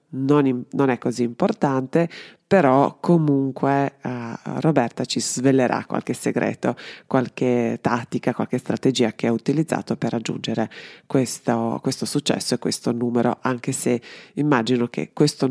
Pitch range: 125-155 Hz